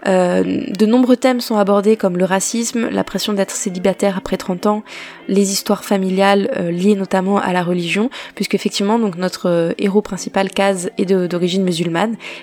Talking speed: 180 wpm